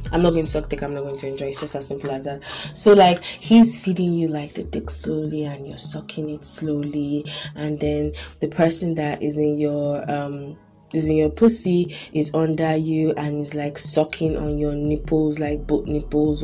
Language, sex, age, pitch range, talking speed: English, female, 20-39, 150-185 Hz, 210 wpm